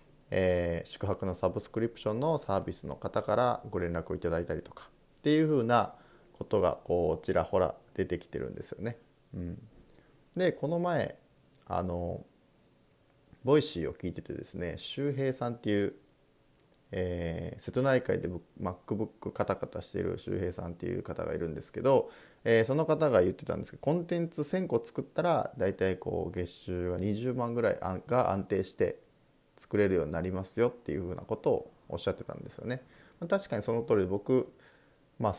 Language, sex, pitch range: Japanese, male, 90-125 Hz